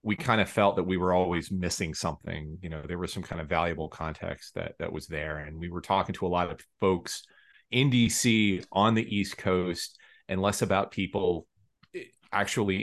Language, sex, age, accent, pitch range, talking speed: English, male, 30-49, American, 85-105 Hz, 200 wpm